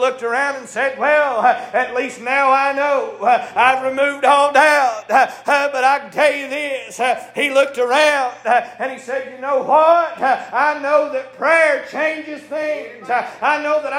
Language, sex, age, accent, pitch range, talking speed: English, male, 40-59, American, 250-300 Hz, 165 wpm